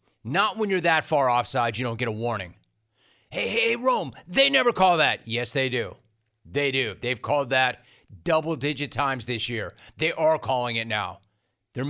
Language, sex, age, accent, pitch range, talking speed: English, male, 40-59, American, 115-165 Hz, 185 wpm